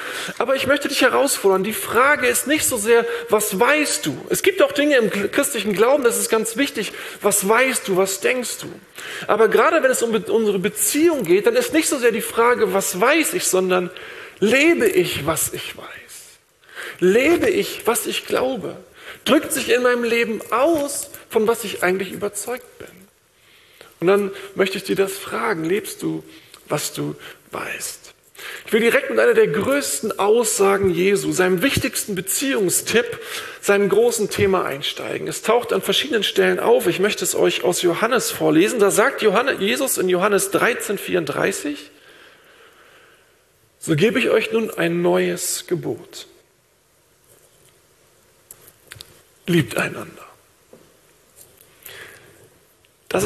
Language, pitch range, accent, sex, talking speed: German, 195-310 Hz, German, male, 145 wpm